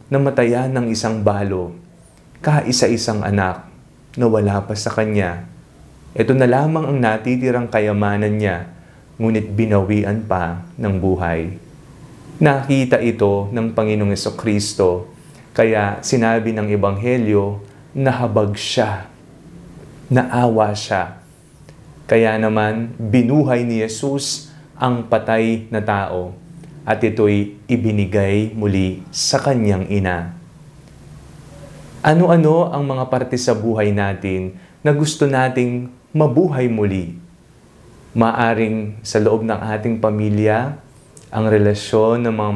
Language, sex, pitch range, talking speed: Filipino, male, 105-135 Hz, 110 wpm